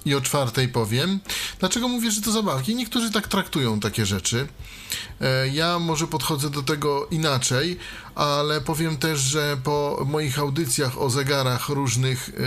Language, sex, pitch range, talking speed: Polish, male, 120-150 Hz, 145 wpm